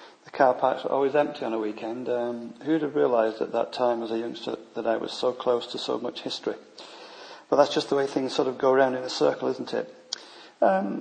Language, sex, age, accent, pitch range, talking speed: English, male, 40-59, British, 115-125 Hz, 240 wpm